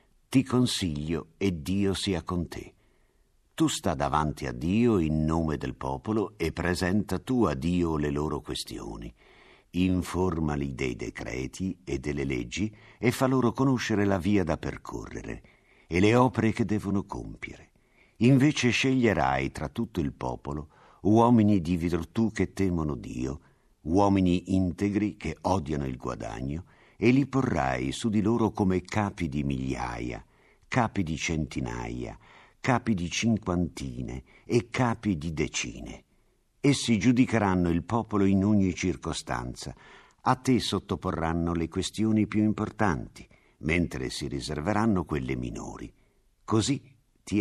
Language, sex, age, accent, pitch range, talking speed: Italian, male, 50-69, native, 75-110 Hz, 130 wpm